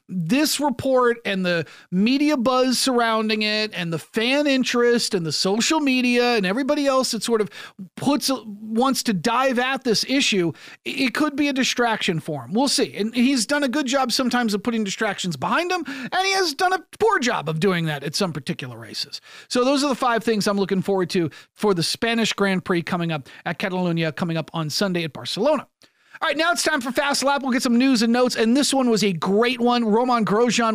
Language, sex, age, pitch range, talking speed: English, male, 40-59, 200-260 Hz, 220 wpm